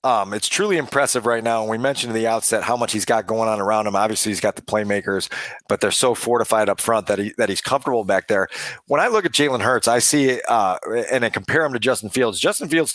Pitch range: 115-135 Hz